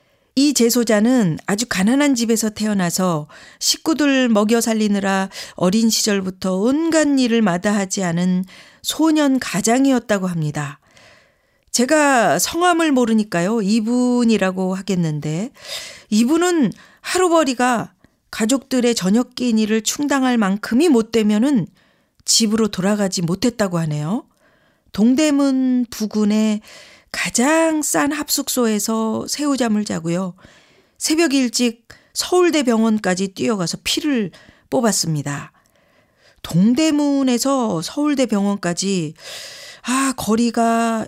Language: Korean